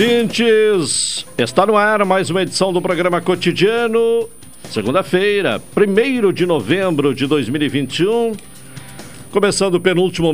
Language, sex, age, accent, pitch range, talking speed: Portuguese, male, 60-79, Brazilian, 120-180 Hz, 105 wpm